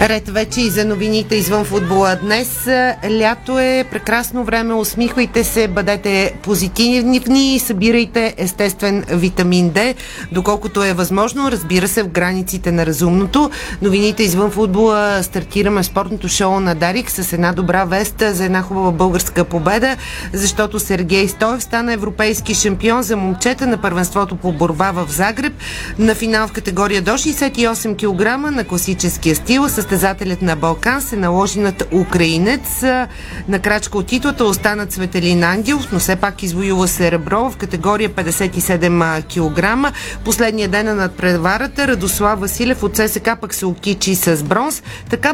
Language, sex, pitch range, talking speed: Bulgarian, female, 185-230 Hz, 145 wpm